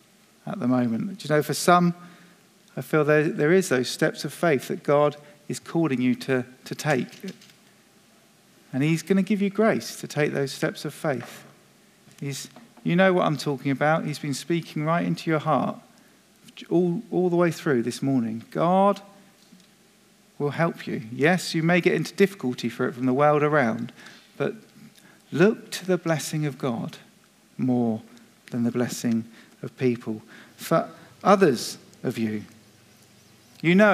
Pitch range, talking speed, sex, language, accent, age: 130-185 Hz, 170 wpm, male, English, British, 40-59